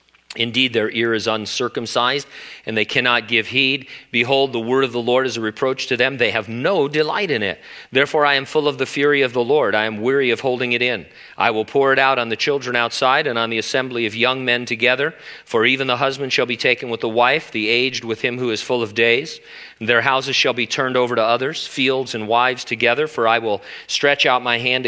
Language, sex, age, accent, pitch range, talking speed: English, male, 40-59, American, 115-135 Hz, 240 wpm